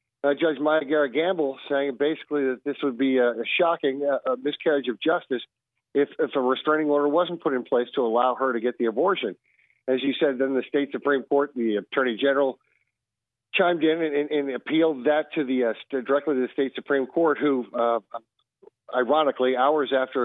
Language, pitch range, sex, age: English, 130-160 Hz, male, 50-69